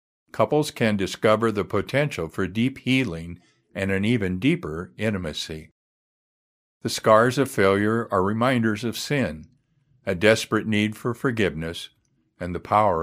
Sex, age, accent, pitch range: male, 50-69, American, 90-115 Hz